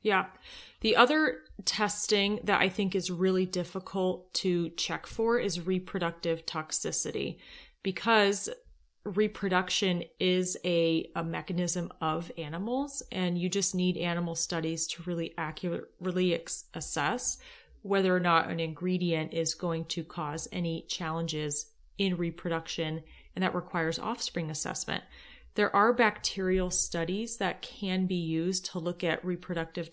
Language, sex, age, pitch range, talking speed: English, female, 30-49, 165-190 Hz, 130 wpm